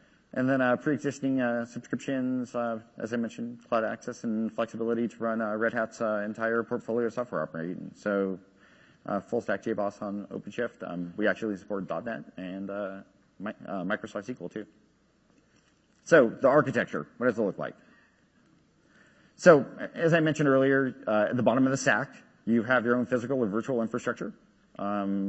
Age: 40-59